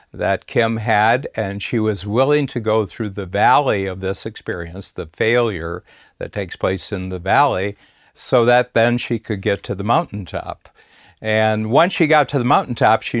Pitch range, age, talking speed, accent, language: 95-120 Hz, 60-79, 180 wpm, American, English